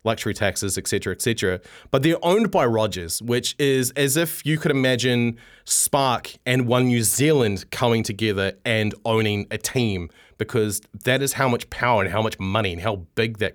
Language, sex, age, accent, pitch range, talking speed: English, male, 20-39, Australian, 110-140 Hz, 180 wpm